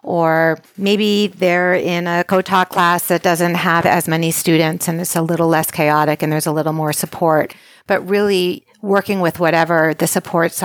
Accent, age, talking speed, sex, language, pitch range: American, 40-59, 180 wpm, female, English, 160-185 Hz